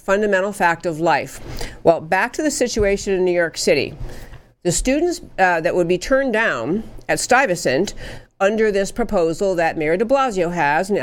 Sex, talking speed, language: female, 175 wpm, English